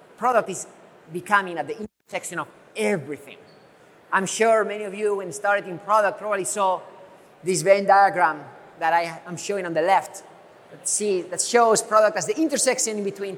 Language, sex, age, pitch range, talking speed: English, male, 30-49, 180-215 Hz, 155 wpm